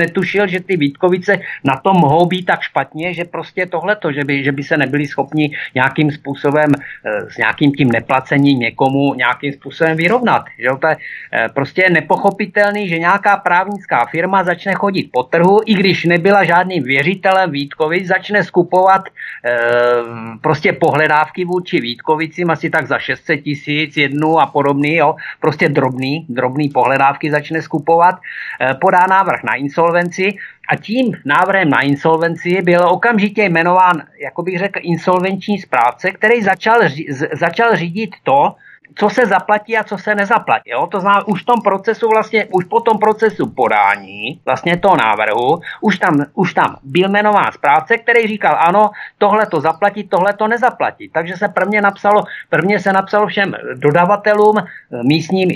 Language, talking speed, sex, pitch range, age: Czech, 160 wpm, male, 150-200 Hz, 50-69